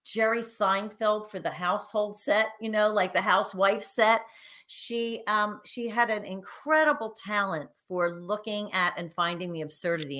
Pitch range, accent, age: 170-225 Hz, American, 40-59